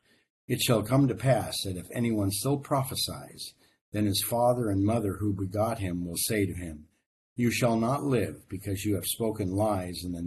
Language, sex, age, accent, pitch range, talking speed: English, male, 60-79, American, 95-115 Hz, 195 wpm